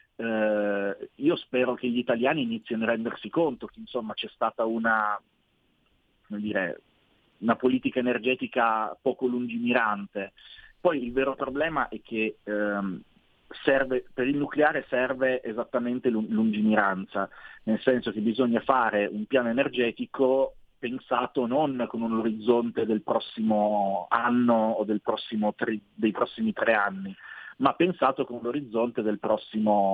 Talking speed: 130 wpm